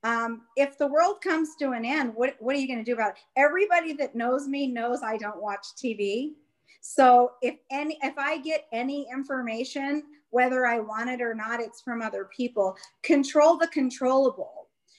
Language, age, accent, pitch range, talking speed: English, 40-59, American, 225-275 Hz, 190 wpm